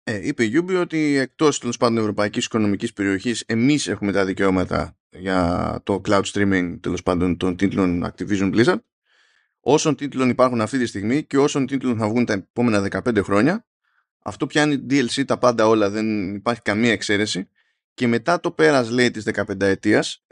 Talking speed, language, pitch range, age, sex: 170 wpm, Greek, 105-130 Hz, 20-39, male